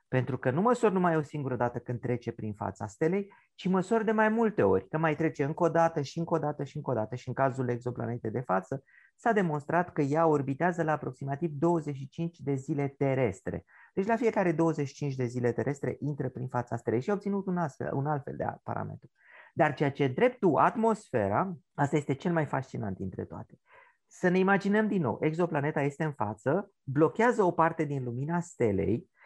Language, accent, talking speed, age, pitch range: Romanian, native, 200 wpm, 30-49, 130-190 Hz